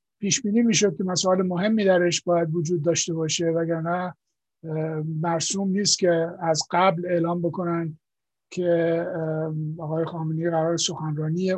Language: English